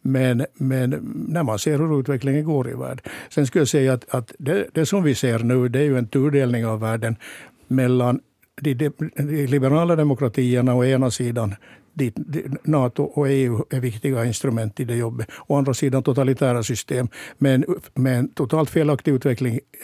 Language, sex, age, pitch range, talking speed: Swedish, male, 60-79, 125-150 Hz, 180 wpm